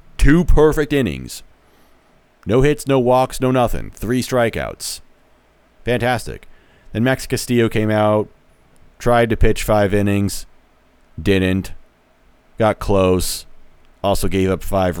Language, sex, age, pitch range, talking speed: English, male, 30-49, 80-120 Hz, 115 wpm